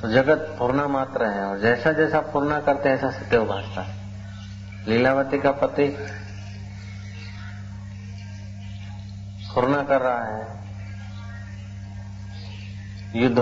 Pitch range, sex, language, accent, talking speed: 100-130 Hz, male, Hindi, native, 95 wpm